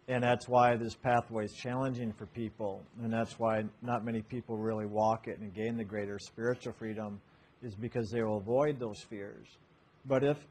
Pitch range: 115-130 Hz